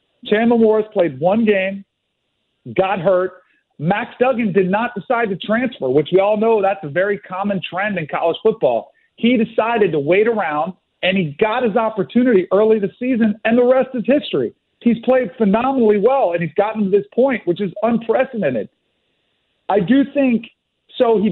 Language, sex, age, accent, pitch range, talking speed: English, male, 40-59, American, 175-225 Hz, 175 wpm